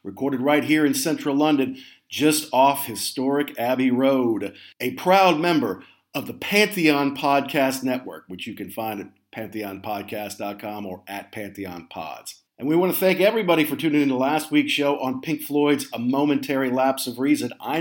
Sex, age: male, 50-69